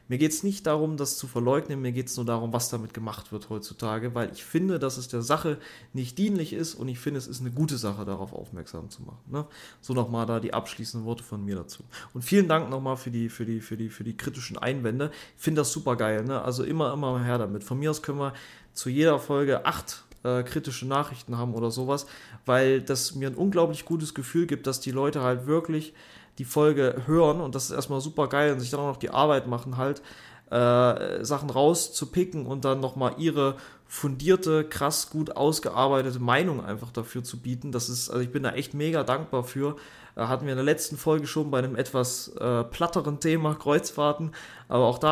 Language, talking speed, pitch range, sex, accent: German, 210 wpm, 120-150 Hz, male, German